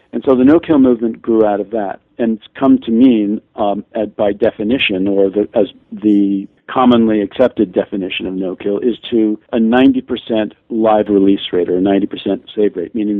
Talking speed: 170 wpm